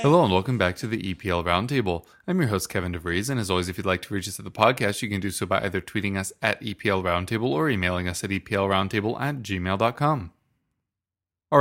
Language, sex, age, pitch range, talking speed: English, male, 30-49, 105-130 Hz, 235 wpm